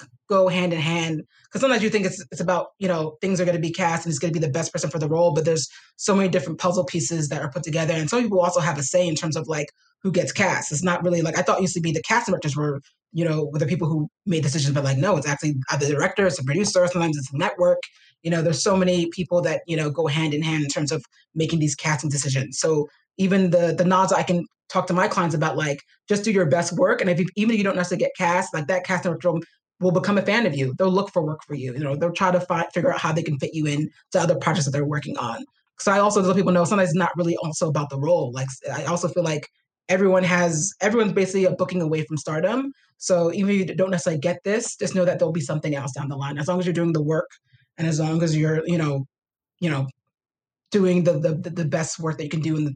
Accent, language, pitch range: American, English, 150-180 Hz